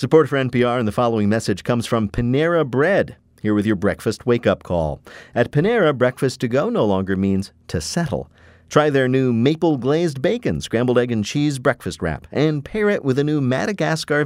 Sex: male